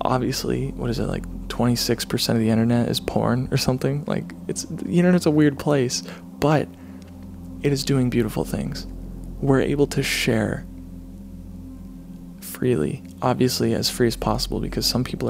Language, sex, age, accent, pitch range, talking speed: English, male, 20-39, American, 90-135 Hz, 155 wpm